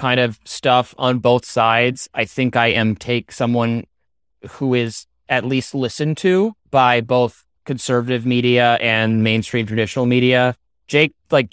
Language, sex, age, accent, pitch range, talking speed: English, male, 30-49, American, 110-130 Hz, 145 wpm